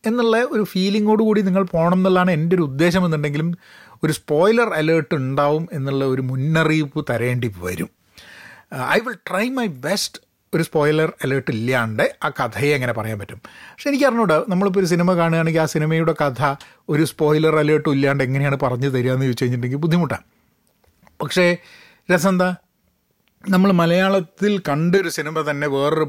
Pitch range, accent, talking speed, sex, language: 130-185 Hz, native, 145 wpm, male, Malayalam